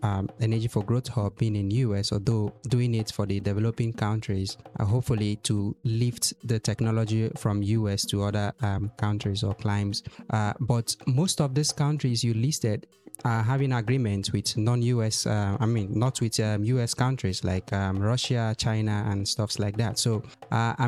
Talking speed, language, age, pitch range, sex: 170 wpm, English, 20-39, 105-125 Hz, male